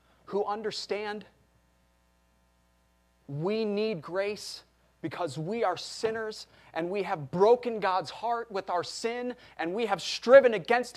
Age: 30-49